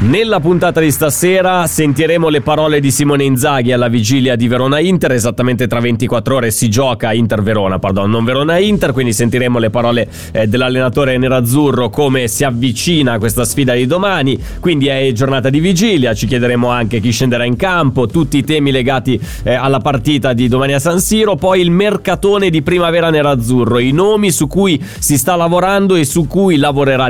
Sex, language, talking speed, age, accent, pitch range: male, Italian, 175 wpm, 30-49, native, 120-155 Hz